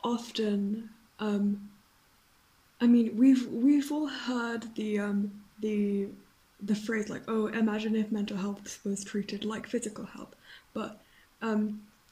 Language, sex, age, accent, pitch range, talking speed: English, female, 10-29, British, 215-245 Hz, 130 wpm